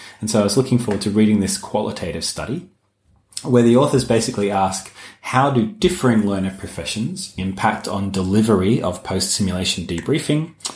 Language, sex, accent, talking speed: English, male, Australian, 150 wpm